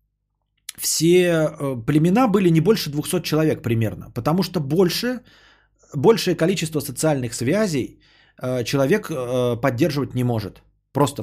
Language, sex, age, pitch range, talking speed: Bulgarian, male, 20-39, 125-175 Hz, 105 wpm